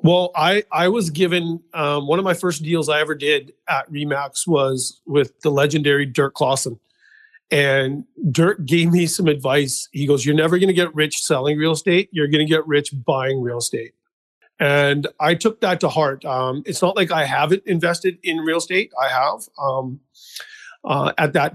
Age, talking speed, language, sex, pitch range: 40-59, 190 wpm, English, male, 140-165 Hz